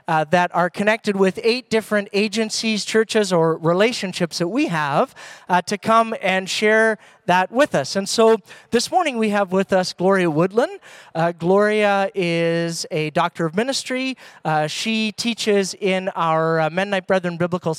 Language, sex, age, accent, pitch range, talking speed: English, male, 40-59, American, 160-210 Hz, 160 wpm